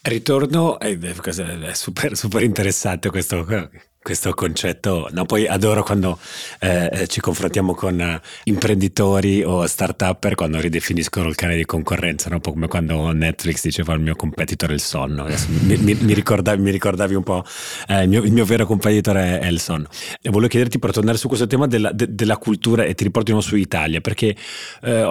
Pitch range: 85-105 Hz